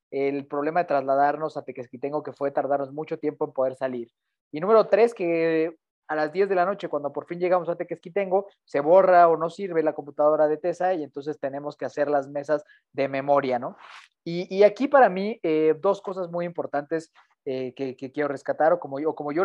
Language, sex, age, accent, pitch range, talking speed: Spanish, male, 30-49, Mexican, 145-190 Hz, 215 wpm